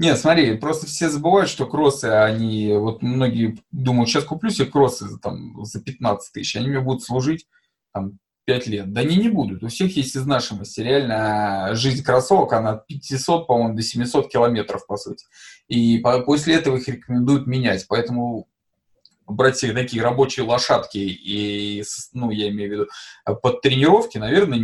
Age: 20-39